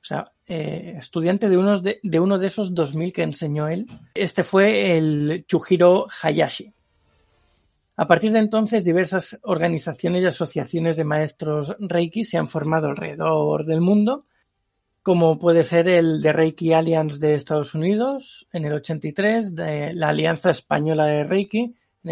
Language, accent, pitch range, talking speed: Spanish, Spanish, 155-190 Hz, 155 wpm